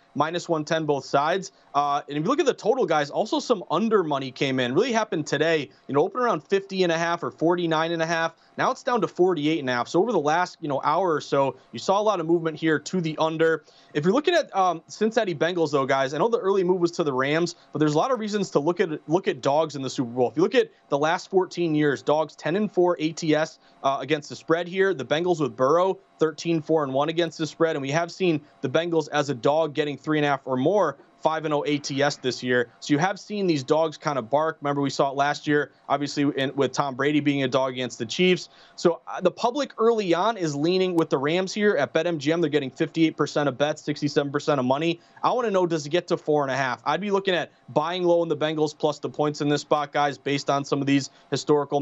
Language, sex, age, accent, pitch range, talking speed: English, male, 30-49, American, 145-175 Hz, 255 wpm